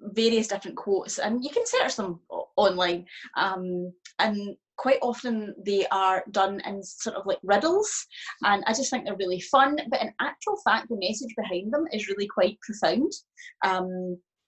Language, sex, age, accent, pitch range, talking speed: English, female, 30-49, British, 190-250 Hz, 170 wpm